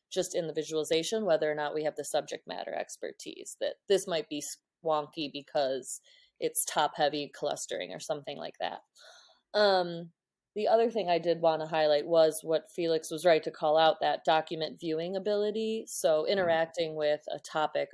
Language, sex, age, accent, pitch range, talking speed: English, female, 20-39, American, 155-185 Hz, 175 wpm